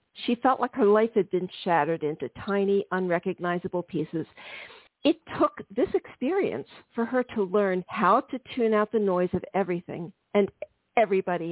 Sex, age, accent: female, 50-69, American